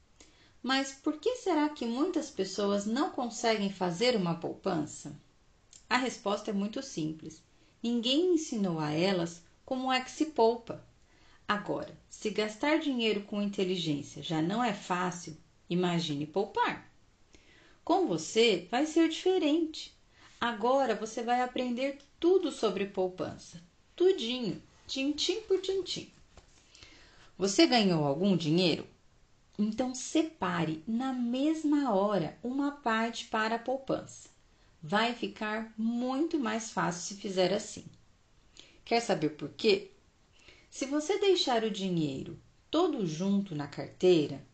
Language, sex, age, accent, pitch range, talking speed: Portuguese, female, 40-59, Brazilian, 180-270 Hz, 120 wpm